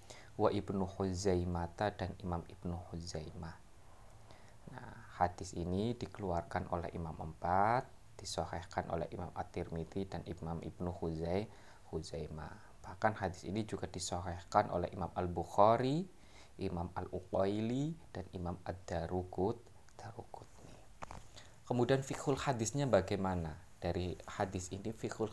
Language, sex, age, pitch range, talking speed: Indonesian, male, 20-39, 90-115 Hz, 105 wpm